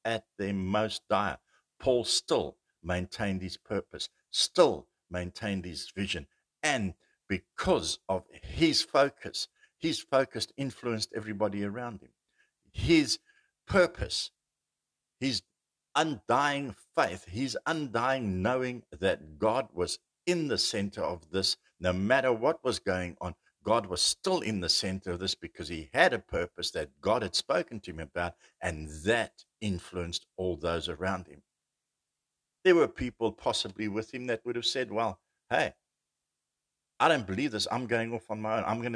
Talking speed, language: 150 wpm, English